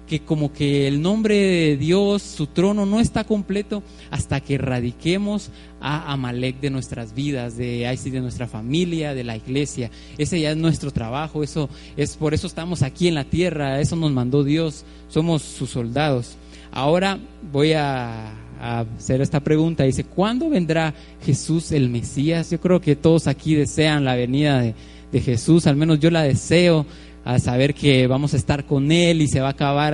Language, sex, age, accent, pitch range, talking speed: Spanish, male, 30-49, Mexican, 130-175 Hz, 180 wpm